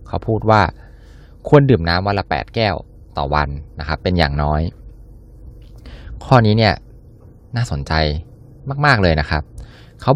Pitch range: 85-120 Hz